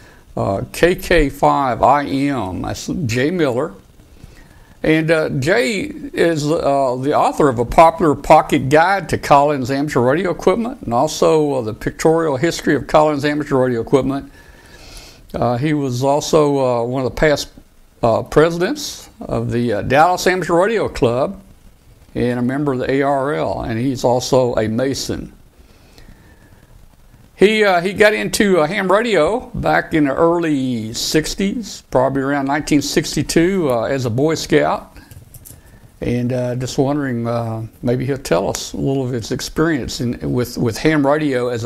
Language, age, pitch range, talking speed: English, 60-79, 125-155 Hz, 150 wpm